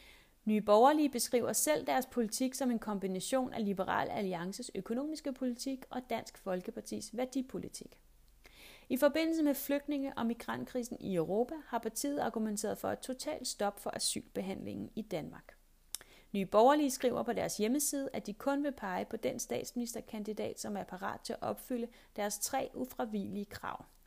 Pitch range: 215-275 Hz